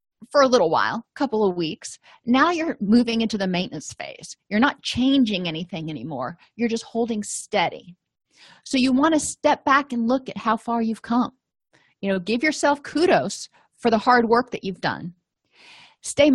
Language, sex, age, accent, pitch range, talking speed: English, female, 30-49, American, 185-240 Hz, 185 wpm